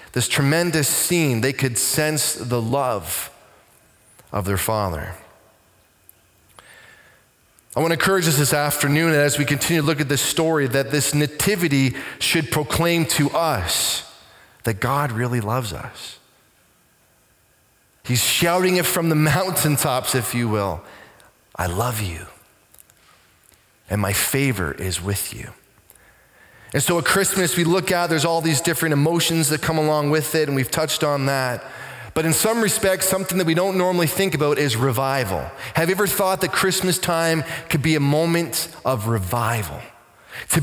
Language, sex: English, male